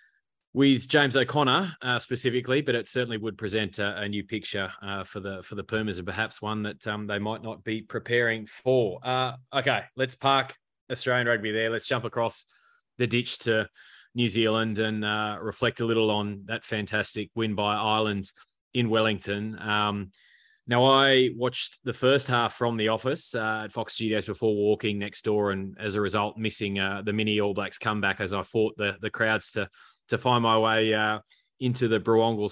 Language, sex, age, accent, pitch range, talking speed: English, male, 20-39, Australian, 105-115 Hz, 190 wpm